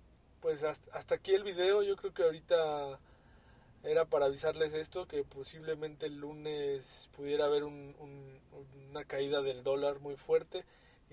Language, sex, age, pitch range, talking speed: Spanish, male, 20-39, 145-190 Hz, 140 wpm